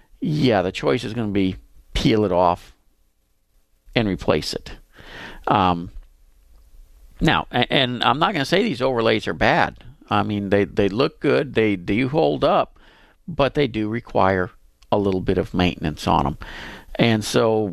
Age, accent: 50-69, American